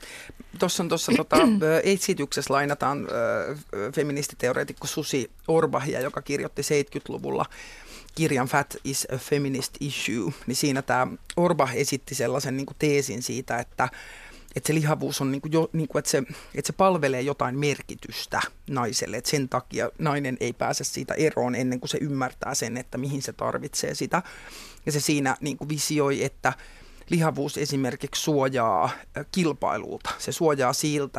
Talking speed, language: 130 wpm, Finnish